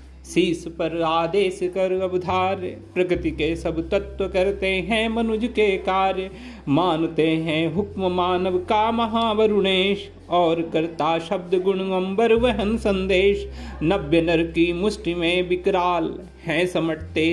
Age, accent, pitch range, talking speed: 40-59, native, 165-205 Hz, 70 wpm